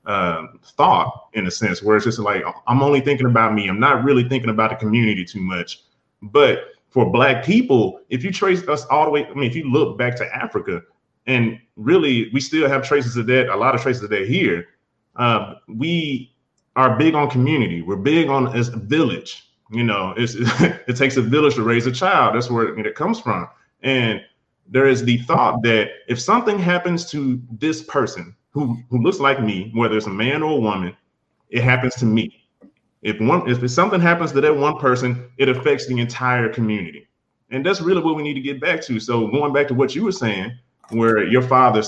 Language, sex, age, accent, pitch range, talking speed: English, male, 30-49, American, 115-145 Hz, 215 wpm